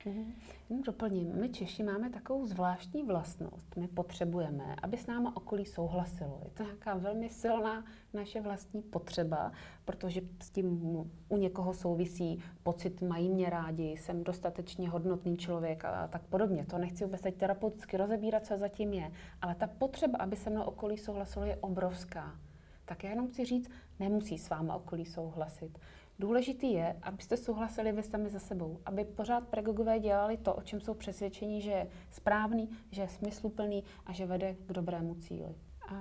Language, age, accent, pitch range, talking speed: Czech, 30-49, native, 180-205 Hz, 160 wpm